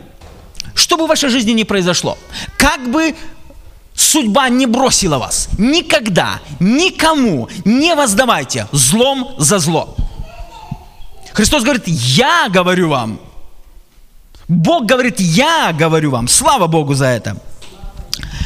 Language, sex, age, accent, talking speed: Russian, male, 20-39, native, 110 wpm